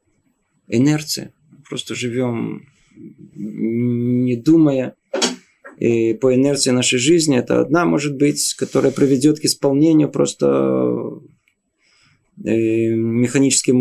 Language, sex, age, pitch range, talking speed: Russian, male, 20-39, 120-150 Hz, 85 wpm